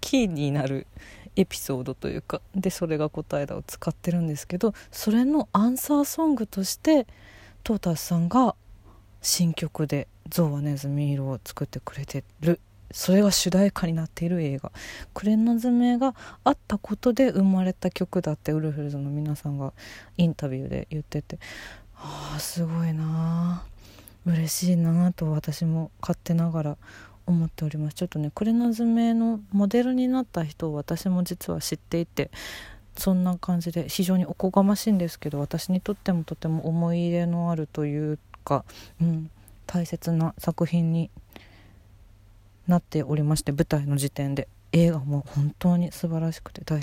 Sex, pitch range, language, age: female, 145-185 Hz, Japanese, 20-39